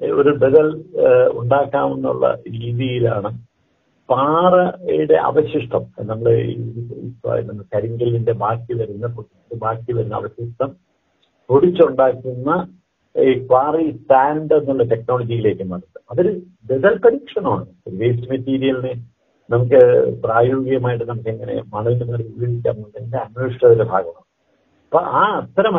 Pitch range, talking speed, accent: 120-180 Hz, 95 wpm, native